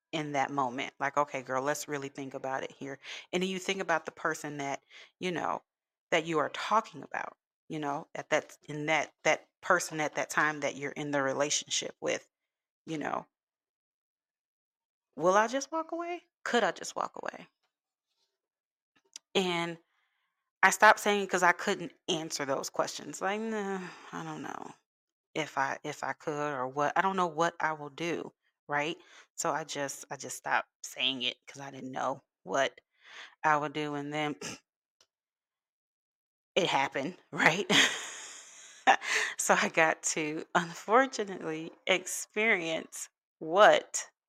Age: 30-49